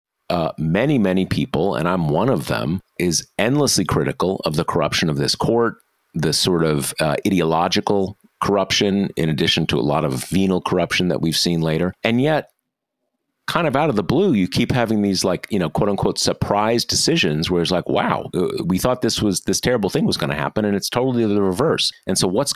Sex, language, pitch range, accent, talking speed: male, English, 80-100 Hz, American, 205 wpm